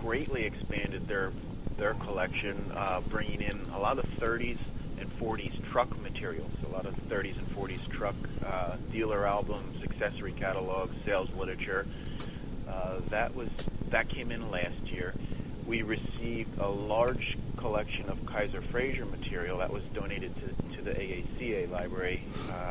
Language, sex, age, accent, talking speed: English, male, 30-49, American, 145 wpm